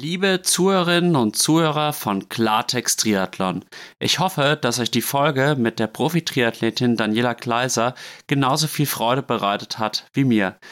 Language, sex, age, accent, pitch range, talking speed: German, male, 30-49, German, 115-145 Hz, 140 wpm